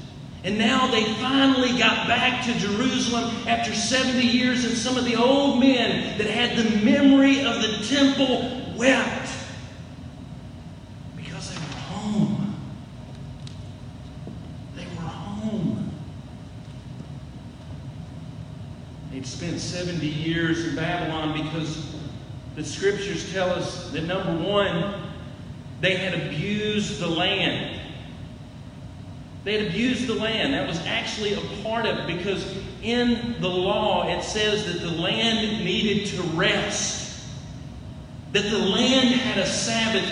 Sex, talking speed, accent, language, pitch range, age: male, 120 wpm, American, English, 155-230 Hz, 40-59